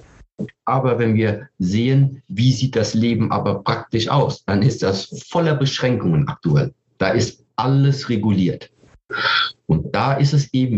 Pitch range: 110-140 Hz